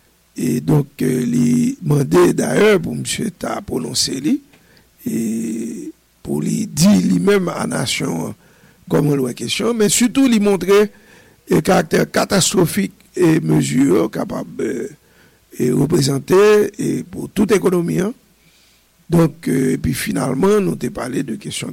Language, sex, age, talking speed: English, male, 60-79, 155 wpm